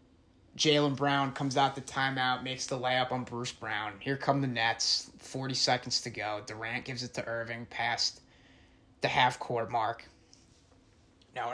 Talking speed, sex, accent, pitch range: 155 wpm, male, American, 115-140 Hz